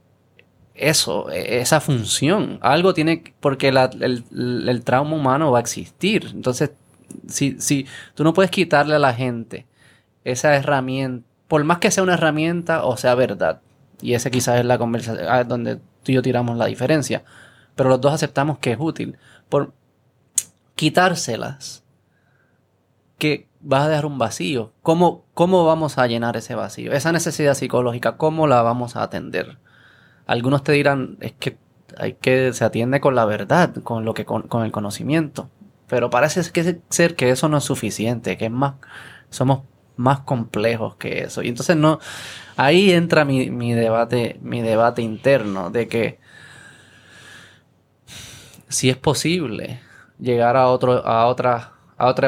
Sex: male